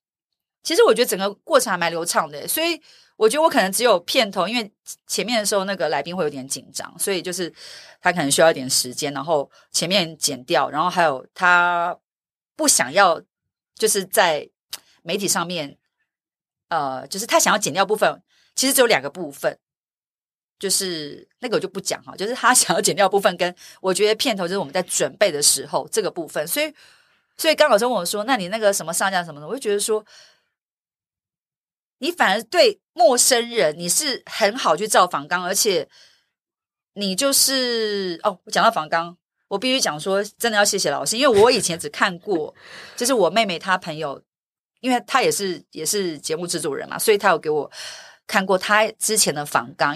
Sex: female